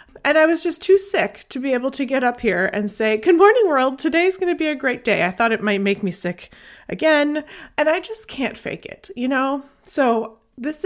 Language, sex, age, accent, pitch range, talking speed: English, female, 30-49, American, 200-285 Hz, 240 wpm